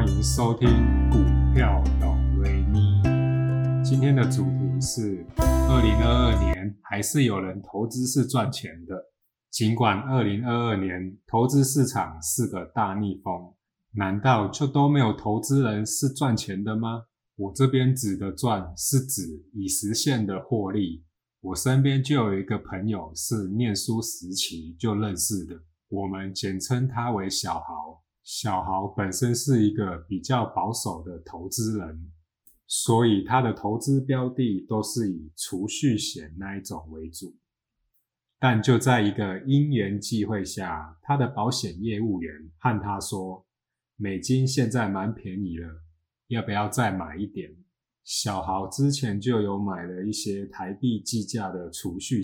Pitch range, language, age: 95-120 Hz, Chinese, 20-39